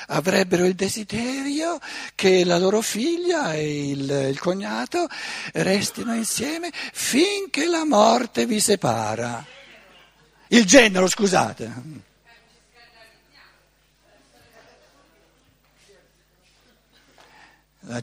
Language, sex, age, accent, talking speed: Italian, male, 60-79, native, 75 wpm